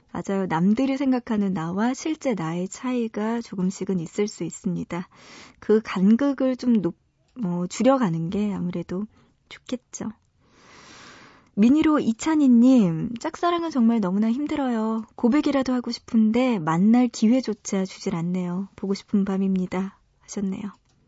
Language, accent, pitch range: Korean, native, 190-245 Hz